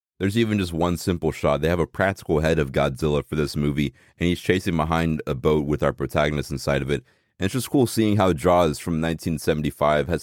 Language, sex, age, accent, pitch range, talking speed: English, male, 30-49, American, 80-105 Hz, 225 wpm